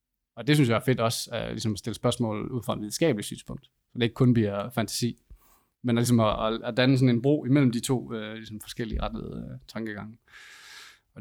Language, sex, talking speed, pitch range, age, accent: Danish, male, 220 wpm, 110-125 Hz, 20-39, native